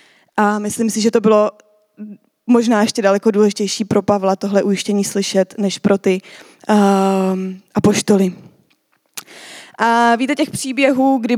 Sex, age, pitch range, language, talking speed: female, 20-39, 205-240 Hz, Czech, 125 wpm